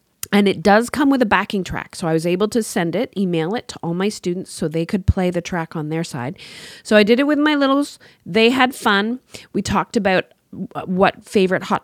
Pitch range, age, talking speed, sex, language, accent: 165-225 Hz, 30-49, 235 wpm, female, English, American